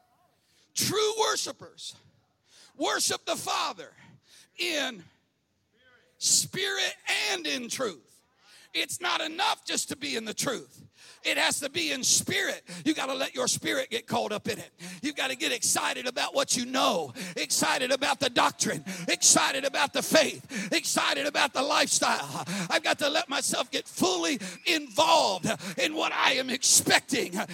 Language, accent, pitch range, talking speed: English, American, 230-295 Hz, 155 wpm